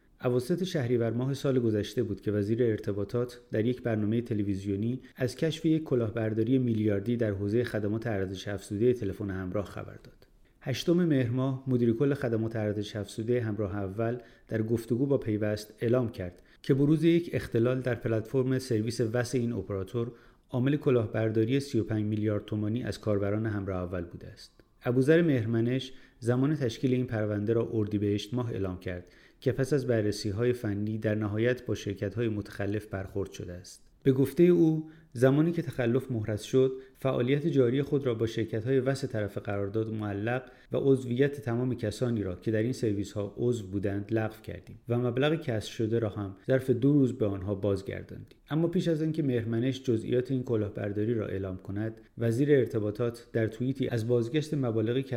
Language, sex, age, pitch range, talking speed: Persian, male, 30-49, 105-130 Hz, 165 wpm